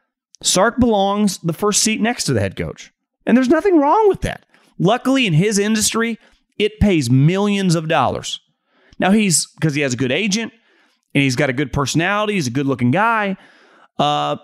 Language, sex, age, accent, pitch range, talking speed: English, male, 30-49, American, 160-230 Hz, 185 wpm